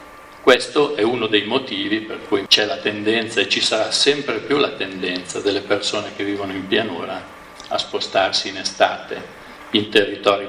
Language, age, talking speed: Italian, 50-69, 165 wpm